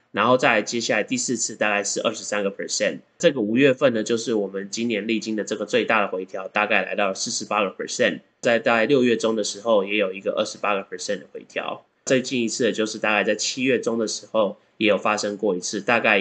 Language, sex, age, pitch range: Chinese, male, 20-39, 100-125 Hz